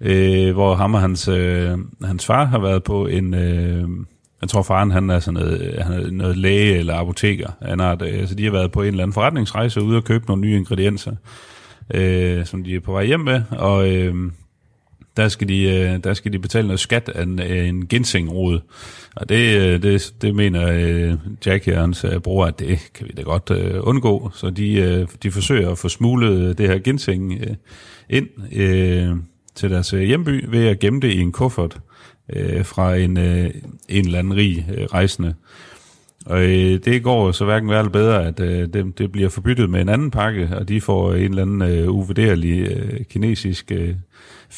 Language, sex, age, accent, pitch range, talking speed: Danish, male, 30-49, native, 90-105 Hz, 200 wpm